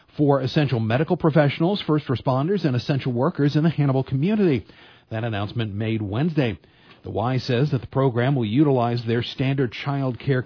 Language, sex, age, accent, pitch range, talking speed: English, male, 40-59, American, 115-140 Hz, 165 wpm